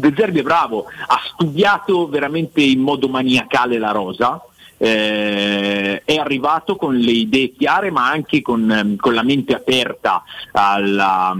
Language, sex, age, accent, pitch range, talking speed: Italian, male, 40-59, native, 105-135 Hz, 140 wpm